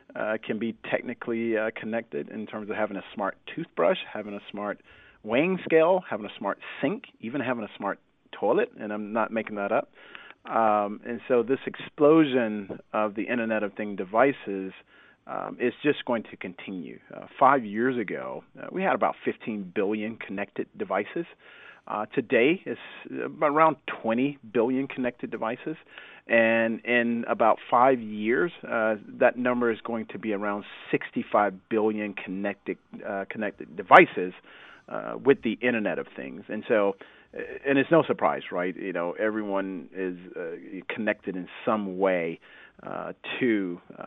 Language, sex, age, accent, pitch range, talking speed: English, male, 40-59, American, 100-120 Hz, 155 wpm